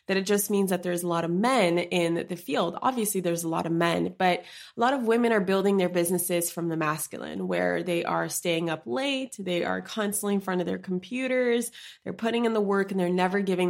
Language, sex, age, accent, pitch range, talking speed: English, female, 20-39, American, 170-210 Hz, 235 wpm